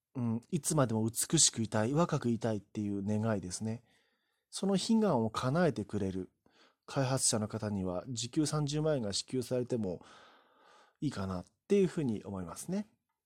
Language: Japanese